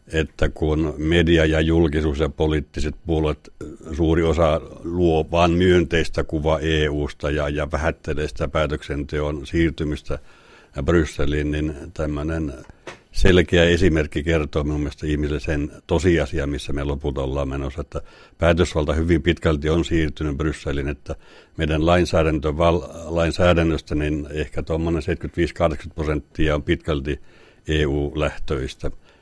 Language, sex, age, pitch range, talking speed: Finnish, male, 60-79, 75-85 Hz, 110 wpm